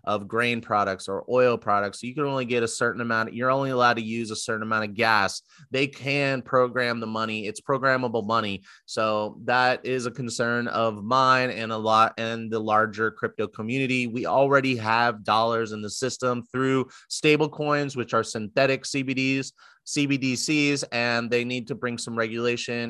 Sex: male